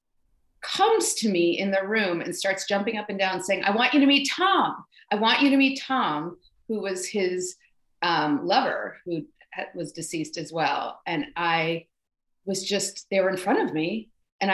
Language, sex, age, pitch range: English, female, 30-49, 170-230 Hz